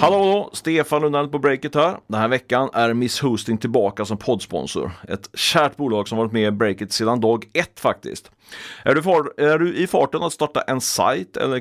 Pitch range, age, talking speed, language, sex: 110-140 Hz, 30-49, 200 wpm, Swedish, male